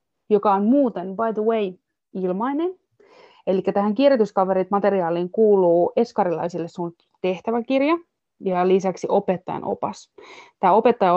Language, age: Finnish, 20-39